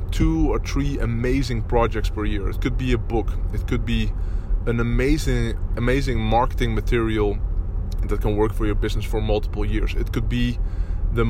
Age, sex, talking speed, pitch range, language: 20-39, male, 175 wpm, 105-120 Hz, English